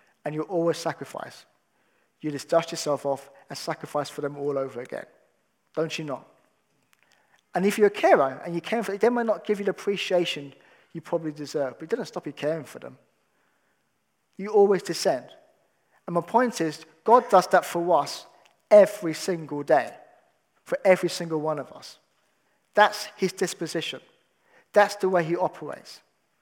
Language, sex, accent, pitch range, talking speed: English, male, British, 155-210 Hz, 175 wpm